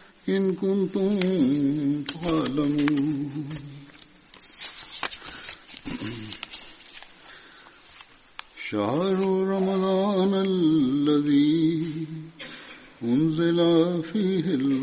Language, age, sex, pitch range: Tamil, 60-79, male, 145-190 Hz